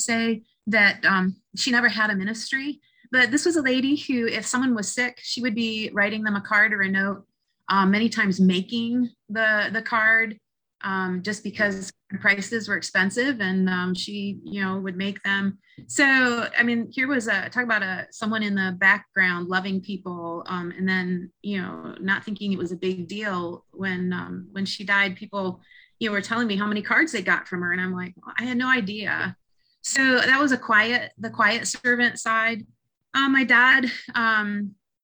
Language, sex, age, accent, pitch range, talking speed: English, female, 30-49, American, 190-230 Hz, 195 wpm